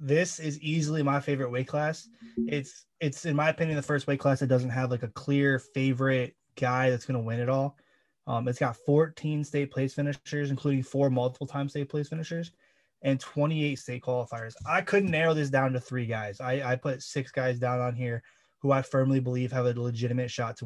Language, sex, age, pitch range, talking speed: English, male, 20-39, 125-145 Hz, 210 wpm